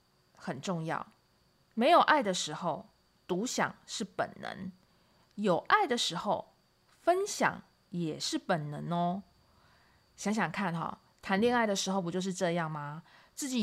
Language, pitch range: Chinese, 170-235 Hz